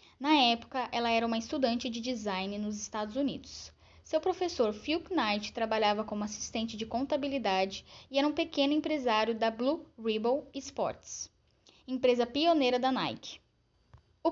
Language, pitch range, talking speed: Portuguese, 220-275 Hz, 145 wpm